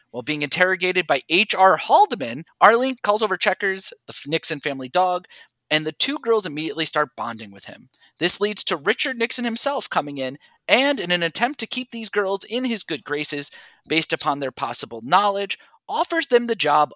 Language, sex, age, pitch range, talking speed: English, male, 20-39, 160-235 Hz, 185 wpm